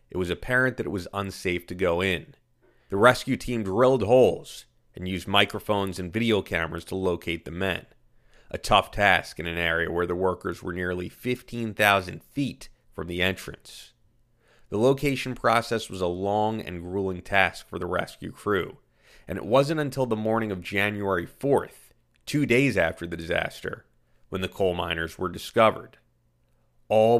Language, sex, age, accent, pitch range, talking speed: English, male, 30-49, American, 90-120 Hz, 165 wpm